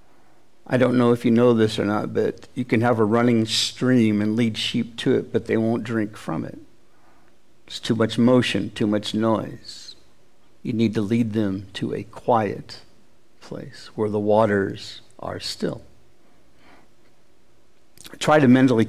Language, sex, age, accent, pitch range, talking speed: English, male, 60-79, American, 105-120 Hz, 160 wpm